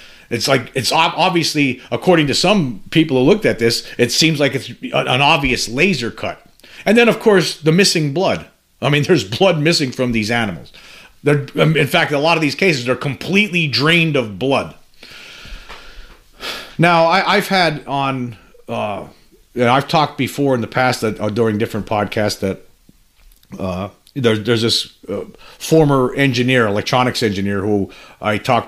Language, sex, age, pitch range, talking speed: English, male, 40-59, 110-145 Hz, 155 wpm